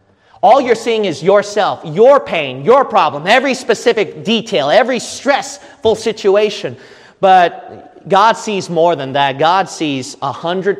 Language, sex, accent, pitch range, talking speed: English, male, American, 175-235 Hz, 140 wpm